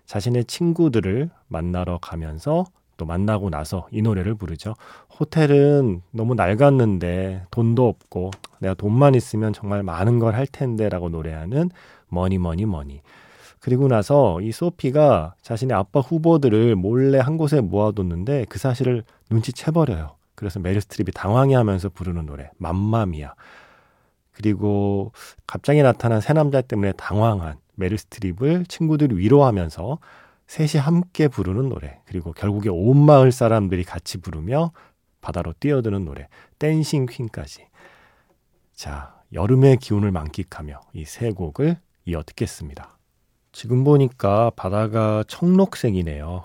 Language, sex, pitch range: Korean, male, 90-135 Hz